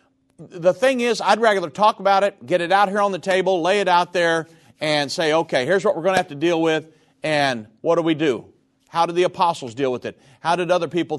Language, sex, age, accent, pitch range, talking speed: English, male, 50-69, American, 145-195 Hz, 250 wpm